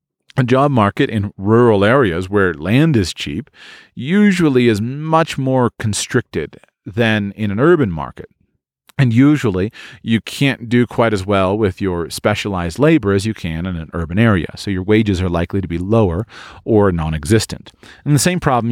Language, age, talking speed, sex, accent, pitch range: English, 40-59, 170 wpm, male, American, 95-135 Hz